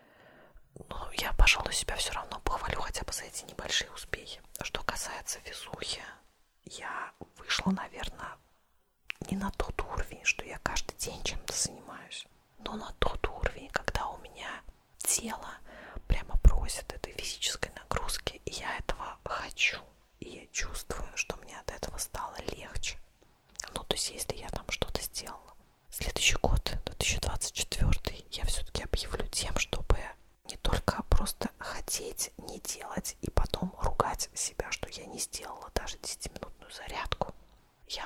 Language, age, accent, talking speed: Russian, 20-39, native, 140 wpm